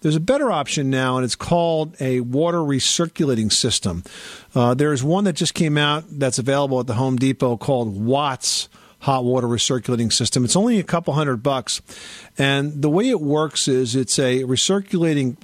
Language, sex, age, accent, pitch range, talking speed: English, male, 50-69, American, 120-150 Hz, 180 wpm